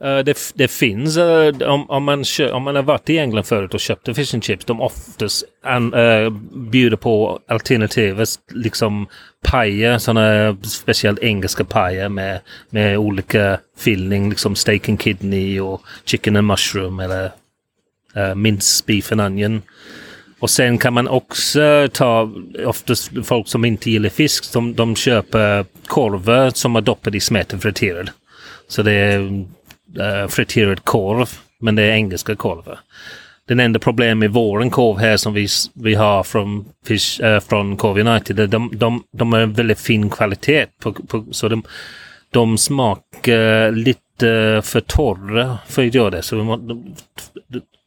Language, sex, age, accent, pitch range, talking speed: Swedish, male, 30-49, native, 105-120 Hz, 155 wpm